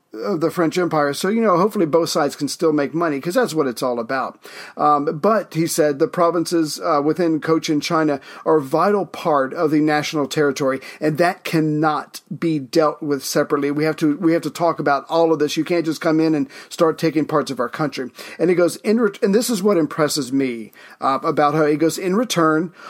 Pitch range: 150-180 Hz